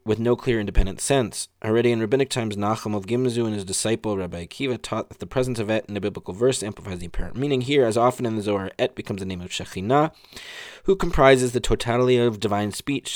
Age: 20-39